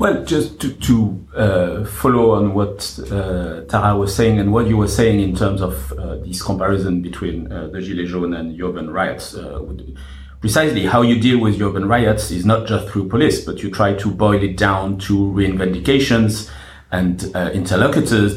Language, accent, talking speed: English, French, 190 wpm